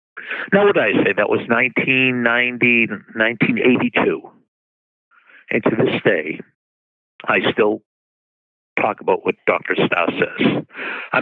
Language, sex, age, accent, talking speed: English, male, 50-69, American, 120 wpm